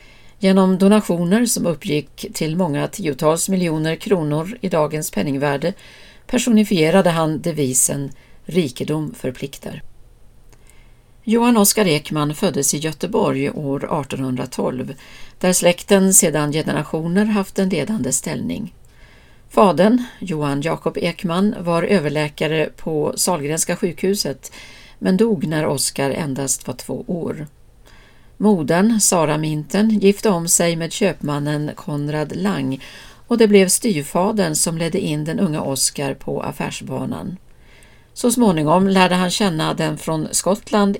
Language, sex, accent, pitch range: Swedish, female, native, 150-195 Hz